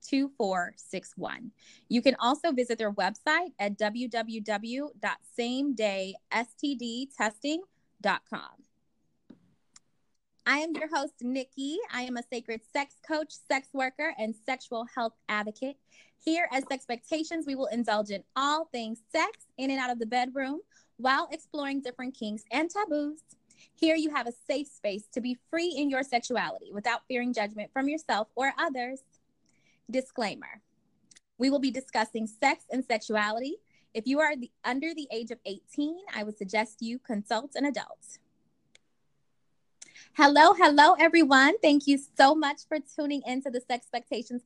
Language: English